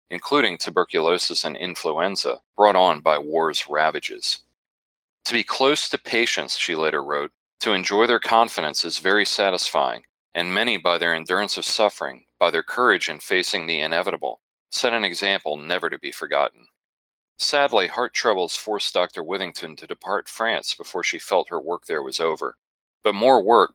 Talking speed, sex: 165 wpm, male